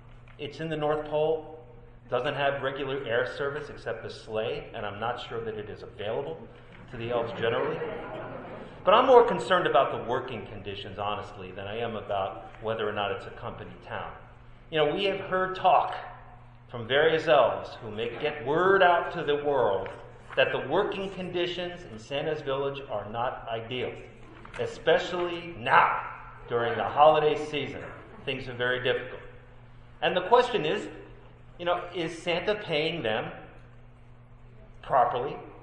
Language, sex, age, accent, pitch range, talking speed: English, male, 40-59, American, 120-175 Hz, 155 wpm